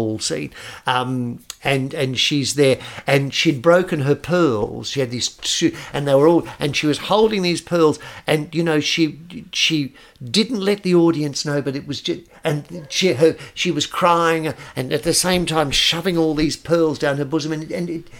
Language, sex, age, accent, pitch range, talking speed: English, male, 50-69, British, 125-165 Hz, 195 wpm